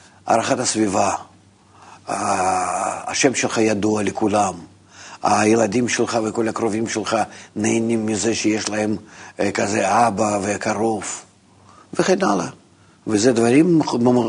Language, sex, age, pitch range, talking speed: Hebrew, male, 50-69, 100-125 Hz, 90 wpm